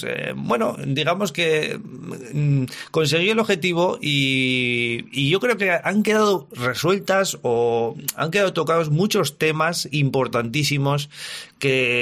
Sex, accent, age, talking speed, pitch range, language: male, Spanish, 30-49, 110 wpm, 130-175 Hz, Spanish